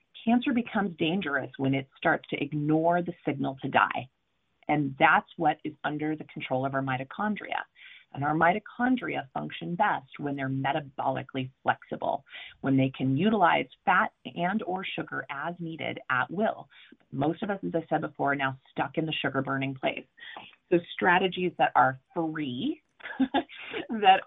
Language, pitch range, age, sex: English, 145-190 Hz, 30-49, female